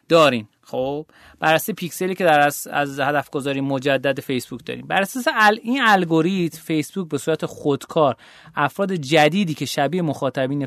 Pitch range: 135-180 Hz